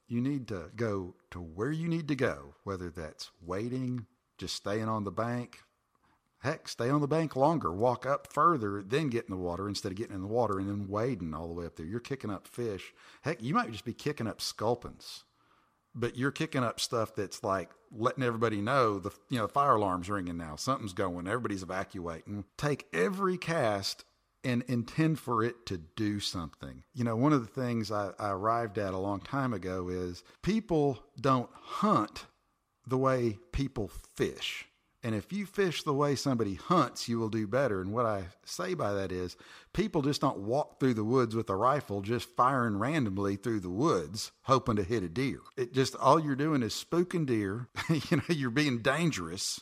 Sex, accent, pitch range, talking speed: male, American, 100-135 Hz, 200 wpm